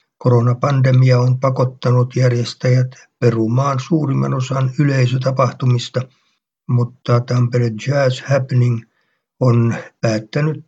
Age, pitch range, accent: 60-79, 120-135 Hz, native